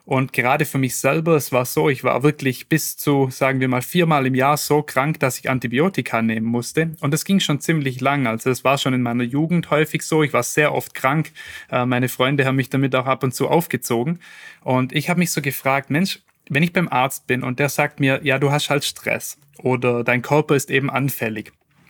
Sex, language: male, German